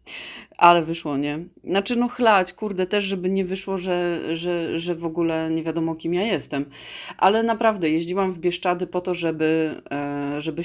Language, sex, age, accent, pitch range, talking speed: Polish, female, 30-49, native, 140-175 Hz, 170 wpm